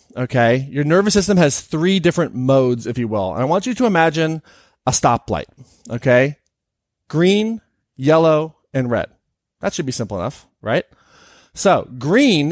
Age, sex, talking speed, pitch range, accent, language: 30-49, male, 155 wpm, 130-170 Hz, American, English